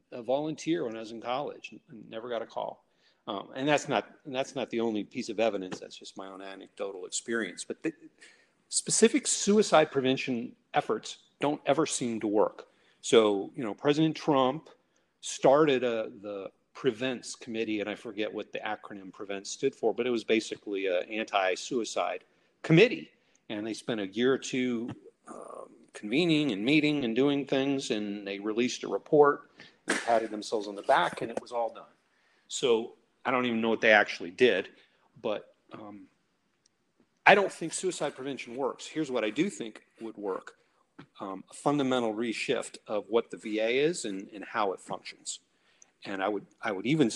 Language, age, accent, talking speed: English, 40-59, American, 180 wpm